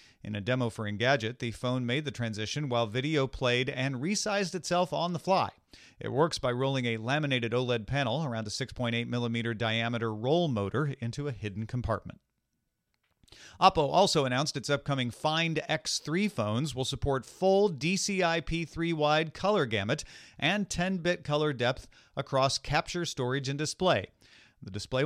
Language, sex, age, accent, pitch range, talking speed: English, male, 40-59, American, 115-155 Hz, 150 wpm